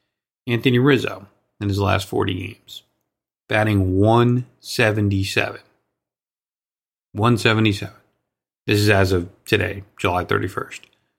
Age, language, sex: 40-59, English, male